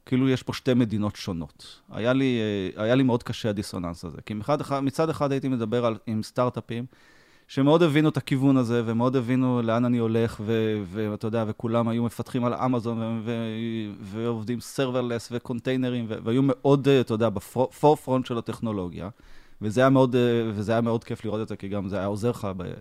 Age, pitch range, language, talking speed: 20-39, 105-130 Hz, Hebrew, 180 wpm